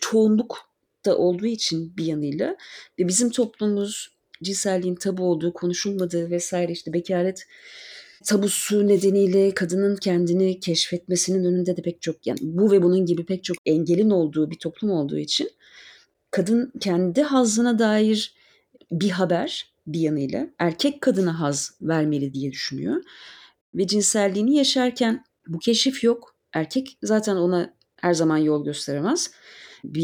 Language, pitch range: Turkish, 175-235 Hz